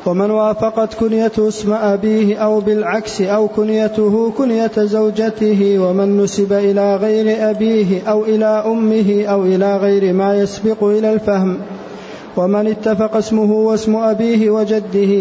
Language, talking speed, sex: Arabic, 125 wpm, male